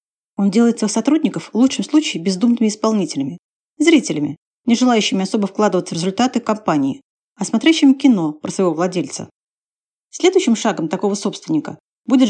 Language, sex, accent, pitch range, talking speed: Russian, female, native, 190-255 Hz, 135 wpm